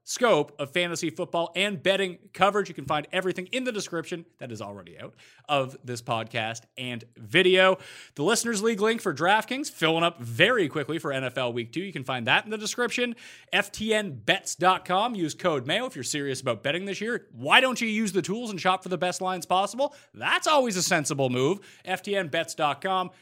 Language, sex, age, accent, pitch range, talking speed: English, male, 30-49, American, 145-225 Hz, 190 wpm